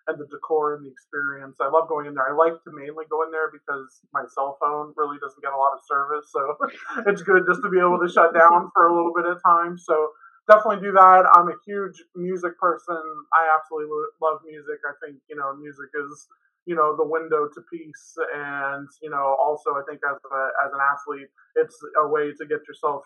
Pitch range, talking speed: 140-170 Hz, 225 wpm